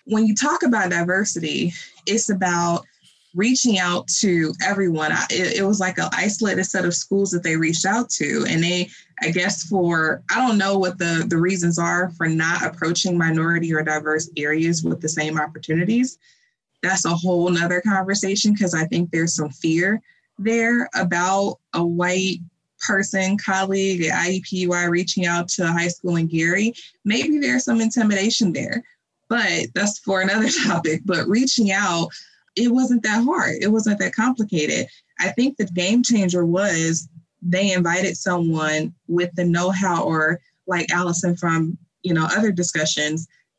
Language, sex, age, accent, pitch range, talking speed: English, female, 20-39, American, 165-200 Hz, 160 wpm